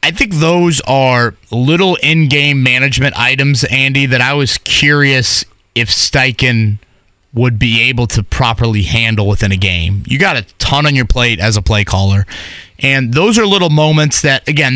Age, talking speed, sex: 30-49, 170 wpm, male